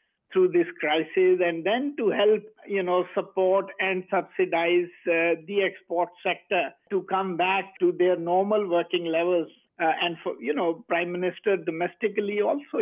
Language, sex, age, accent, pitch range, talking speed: English, male, 50-69, Indian, 170-205 Hz, 155 wpm